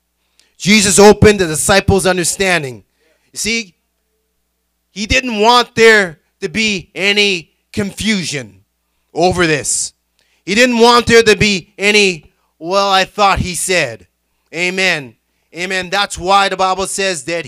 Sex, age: male, 30-49